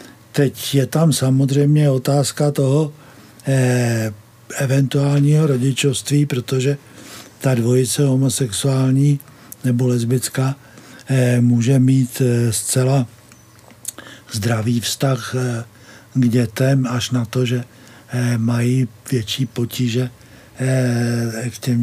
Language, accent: Czech, native